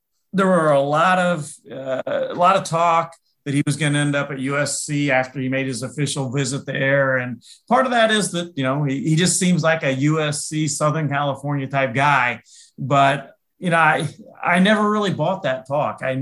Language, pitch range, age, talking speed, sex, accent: English, 135-160 Hz, 40-59, 205 wpm, male, American